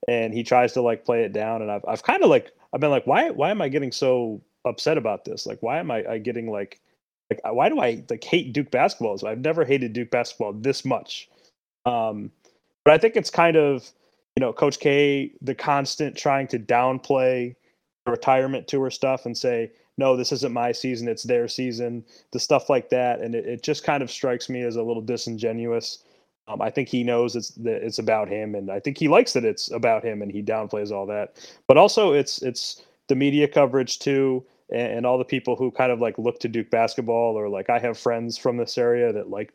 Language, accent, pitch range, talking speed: English, American, 115-135 Hz, 230 wpm